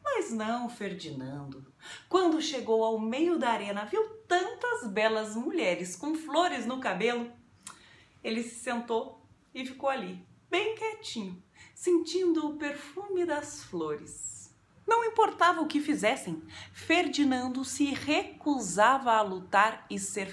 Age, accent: 30-49, Brazilian